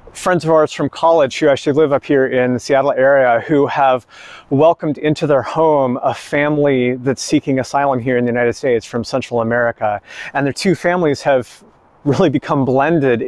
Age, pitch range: 30-49, 125-155 Hz